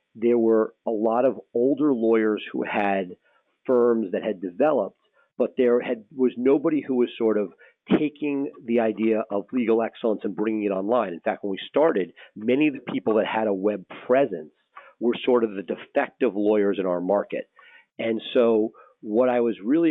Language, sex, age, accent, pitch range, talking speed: English, male, 50-69, American, 105-120 Hz, 185 wpm